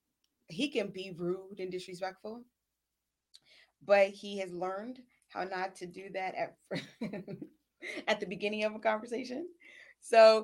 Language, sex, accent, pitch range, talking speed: English, female, American, 185-230 Hz, 130 wpm